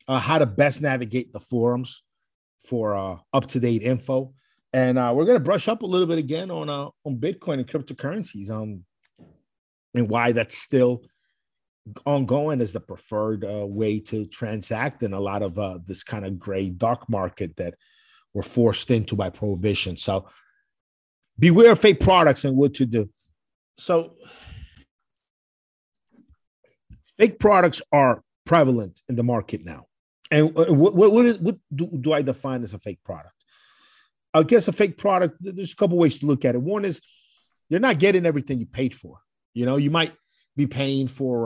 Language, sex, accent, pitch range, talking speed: English, male, American, 110-145 Hz, 170 wpm